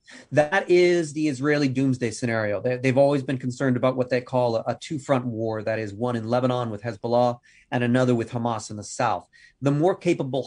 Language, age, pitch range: English, 30-49, 120-140 Hz